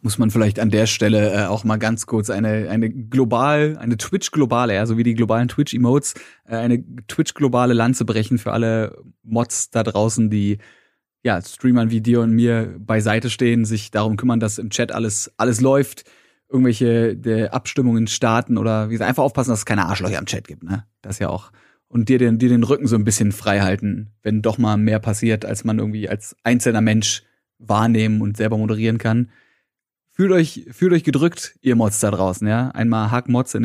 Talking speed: 200 wpm